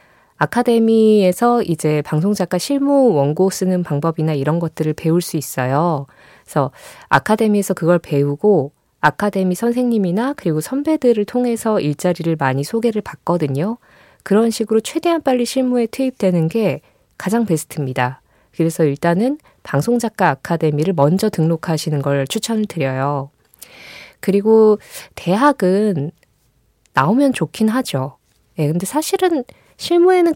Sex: female